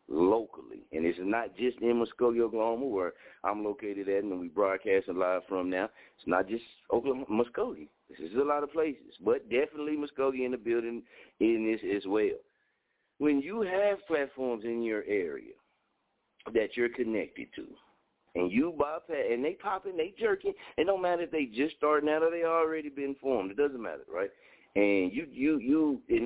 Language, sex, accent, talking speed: English, male, American, 185 wpm